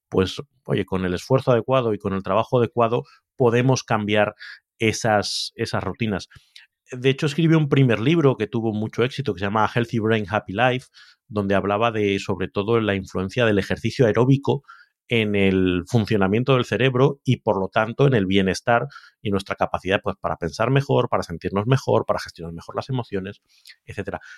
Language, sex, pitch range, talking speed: Spanish, male, 100-130 Hz, 175 wpm